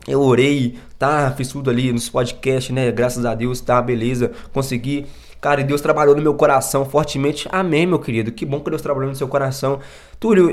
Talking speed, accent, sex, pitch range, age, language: 200 wpm, Brazilian, male, 120-165 Hz, 20-39, Portuguese